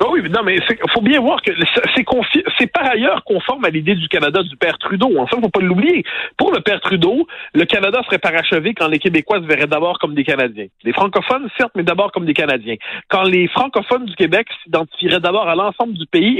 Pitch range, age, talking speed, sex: 155-220 Hz, 50-69, 225 wpm, male